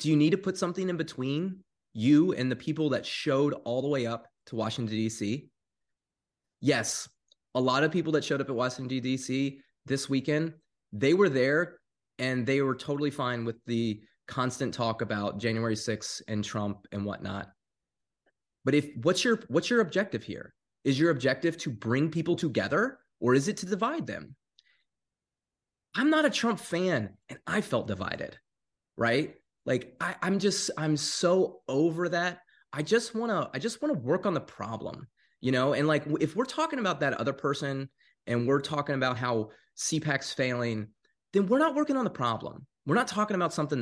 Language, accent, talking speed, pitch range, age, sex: English, American, 185 wpm, 120-175 Hz, 20-39, male